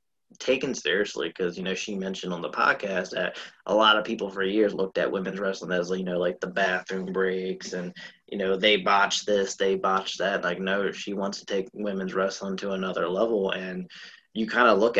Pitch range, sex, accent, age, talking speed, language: 95-105 Hz, male, American, 20-39, 210 wpm, English